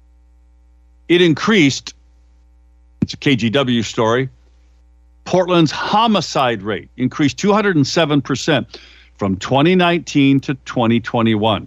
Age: 50-69